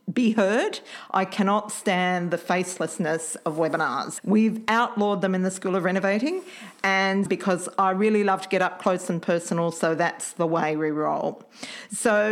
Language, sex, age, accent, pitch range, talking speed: English, female, 40-59, Australian, 175-225 Hz, 170 wpm